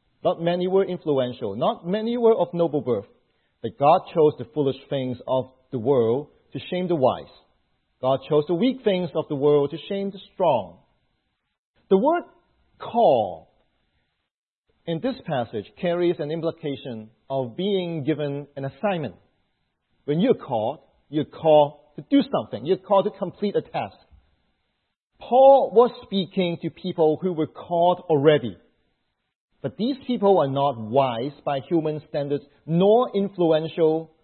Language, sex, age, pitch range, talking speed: English, male, 40-59, 150-210 Hz, 145 wpm